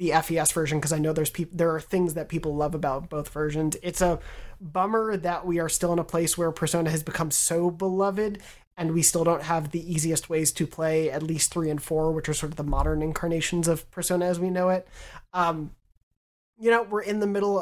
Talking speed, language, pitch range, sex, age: 230 wpm, English, 155-185 Hz, male, 30-49